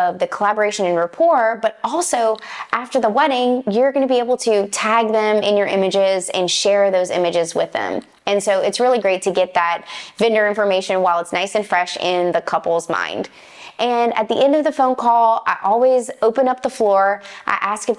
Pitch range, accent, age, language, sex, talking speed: 185-230 Hz, American, 20-39, English, female, 205 wpm